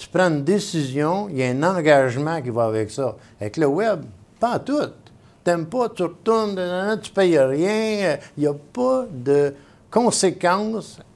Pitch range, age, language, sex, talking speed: 120-175 Hz, 60-79, French, male, 175 wpm